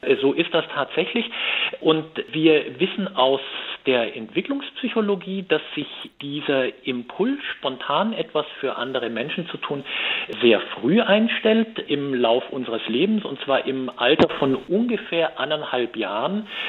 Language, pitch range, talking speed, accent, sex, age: German, 150-215 Hz, 130 wpm, German, male, 50-69